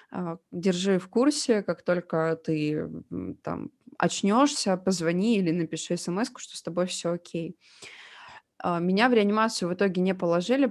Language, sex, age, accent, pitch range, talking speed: Russian, female, 20-39, native, 175-205 Hz, 135 wpm